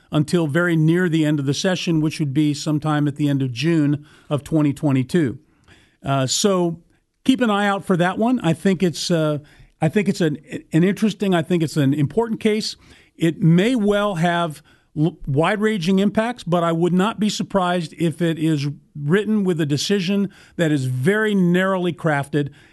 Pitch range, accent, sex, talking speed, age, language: 150-190 Hz, American, male, 180 wpm, 40-59, English